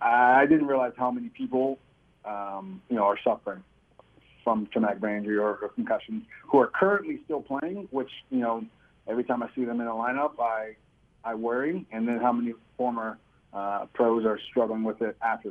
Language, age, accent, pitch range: English, 40-59, American, 115-135 Hz